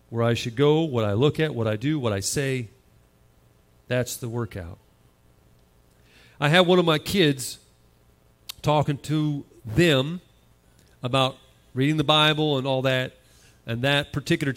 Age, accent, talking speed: 40-59, American, 150 wpm